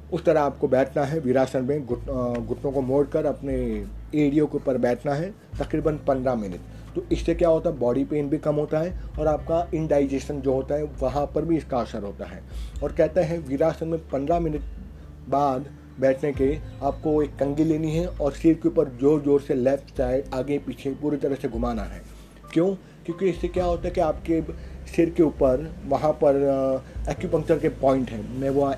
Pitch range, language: 130-155 Hz, Hindi